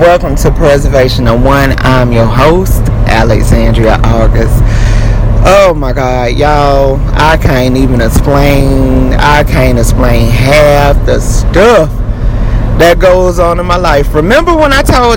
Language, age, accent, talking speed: English, 30-49, American, 135 wpm